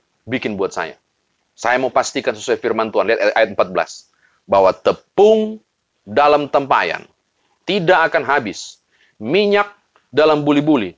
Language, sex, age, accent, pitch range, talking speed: Indonesian, male, 30-49, native, 125-175 Hz, 120 wpm